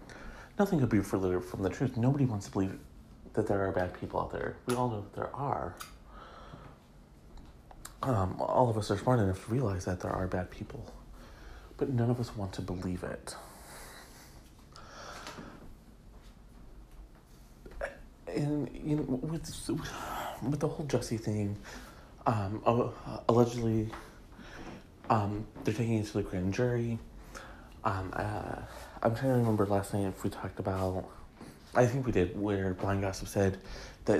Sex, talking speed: male, 150 wpm